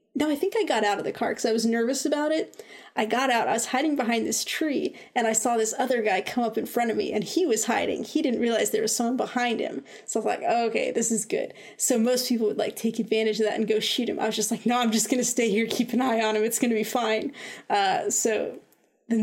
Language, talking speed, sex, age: English, 290 wpm, female, 20-39